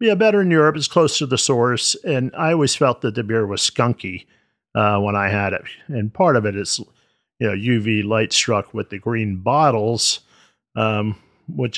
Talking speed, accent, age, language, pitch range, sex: 205 wpm, American, 50-69, English, 105-145 Hz, male